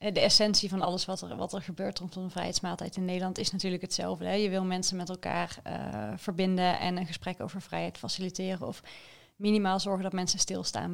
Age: 20-39